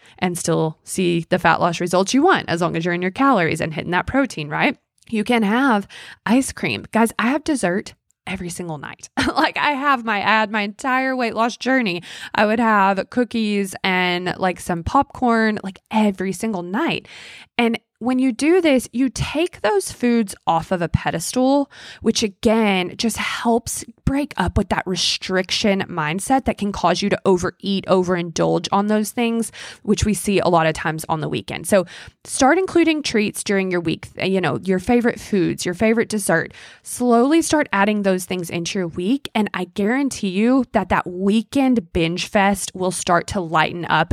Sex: female